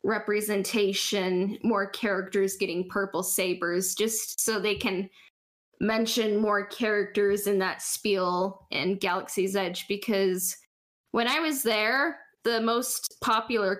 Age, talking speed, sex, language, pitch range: 10-29, 115 wpm, female, English, 190-225 Hz